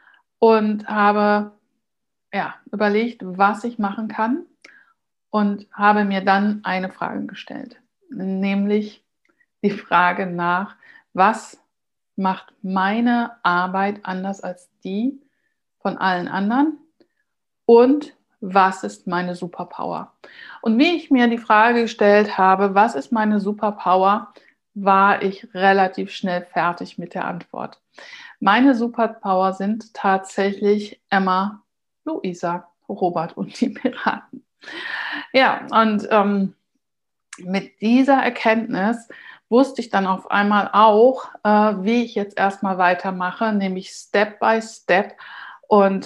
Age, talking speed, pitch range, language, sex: 60-79, 110 wpm, 195-240 Hz, German, female